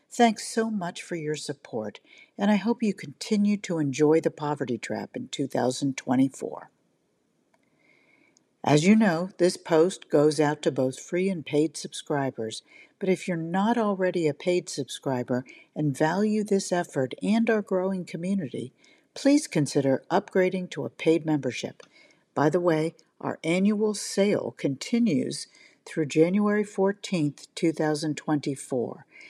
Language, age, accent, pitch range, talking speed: English, 60-79, American, 150-200 Hz, 135 wpm